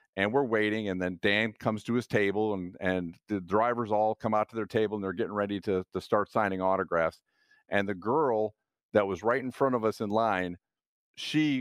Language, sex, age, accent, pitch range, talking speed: English, male, 50-69, American, 105-130 Hz, 215 wpm